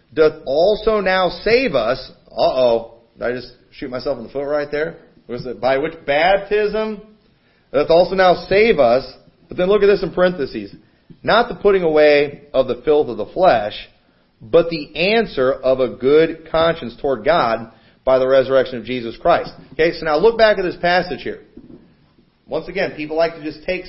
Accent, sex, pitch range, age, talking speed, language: American, male, 135-185 Hz, 40-59, 185 wpm, English